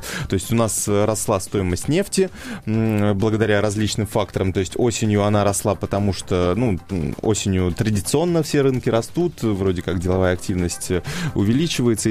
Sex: male